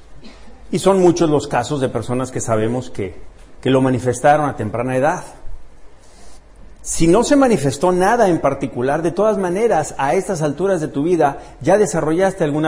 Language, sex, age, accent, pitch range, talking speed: Spanish, male, 50-69, Mexican, 140-180 Hz, 165 wpm